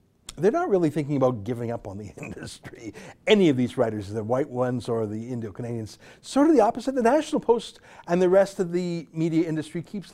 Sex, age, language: male, 50-69, English